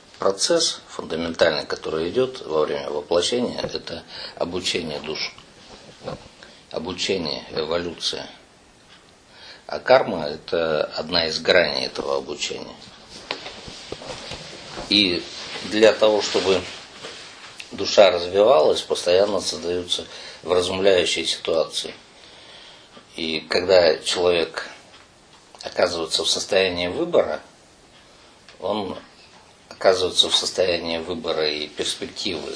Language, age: Russian, 50-69